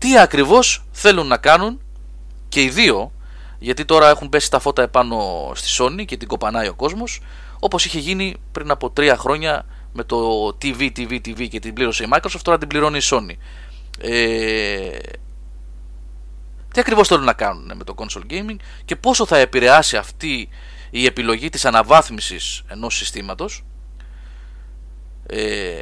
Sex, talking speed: male, 155 wpm